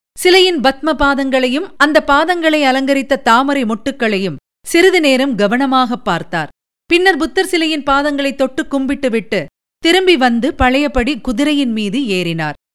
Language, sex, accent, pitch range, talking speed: Tamil, female, native, 195-275 Hz, 115 wpm